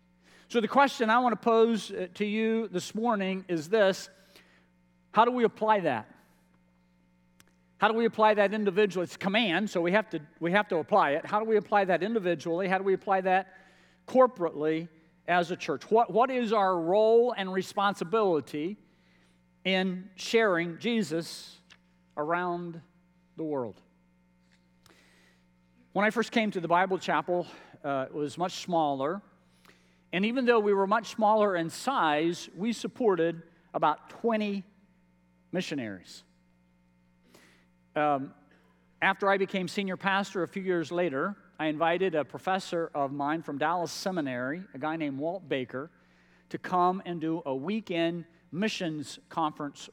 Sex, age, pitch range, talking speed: male, 50-69, 145-200 Hz, 150 wpm